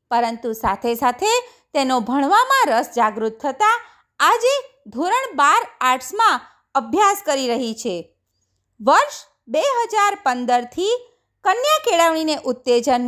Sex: female